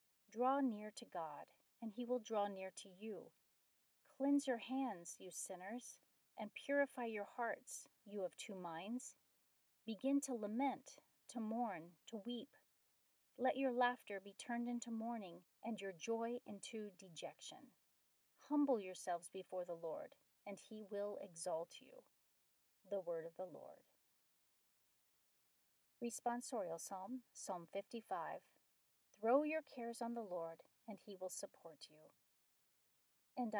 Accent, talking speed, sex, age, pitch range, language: American, 130 wpm, female, 40-59, 190-240 Hz, English